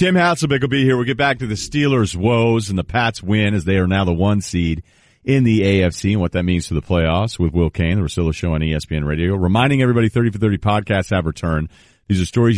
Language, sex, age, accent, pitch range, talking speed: English, male, 40-59, American, 85-115 Hz, 255 wpm